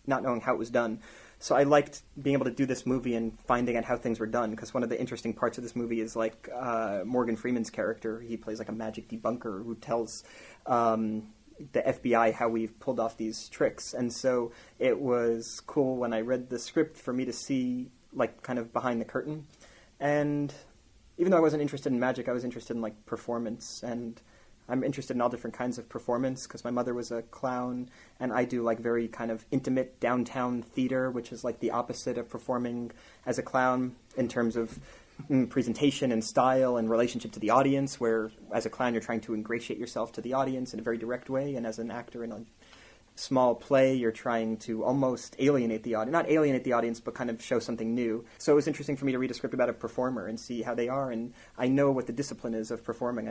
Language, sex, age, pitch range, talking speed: English, male, 30-49, 115-130 Hz, 230 wpm